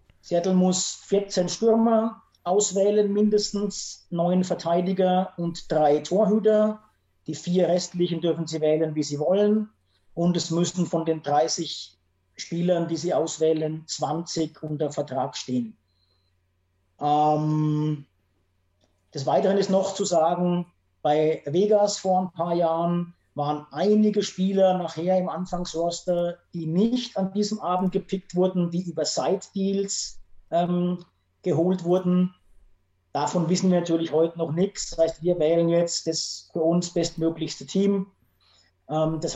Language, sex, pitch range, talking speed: German, male, 150-185 Hz, 130 wpm